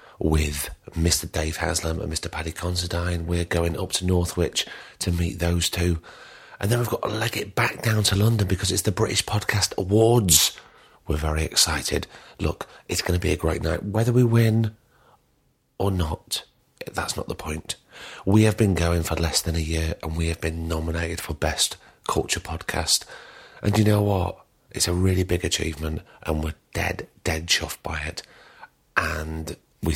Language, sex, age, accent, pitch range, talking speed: English, male, 40-59, British, 80-100 Hz, 180 wpm